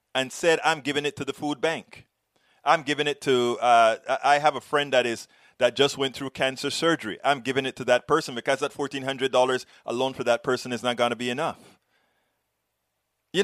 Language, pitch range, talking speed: English, 130-175 Hz, 205 wpm